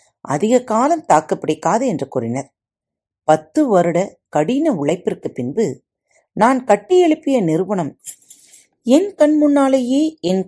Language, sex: Tamil, female